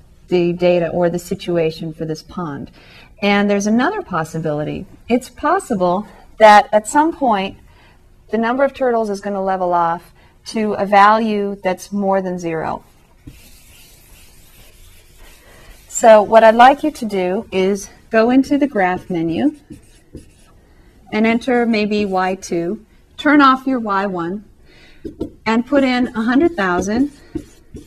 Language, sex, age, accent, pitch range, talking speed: English, female, 40-59, American, 180-235 Hz, 125 wpm